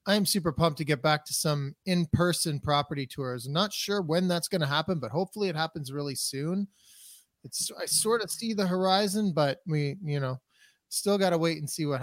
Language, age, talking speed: English, 30-49, 215 wpm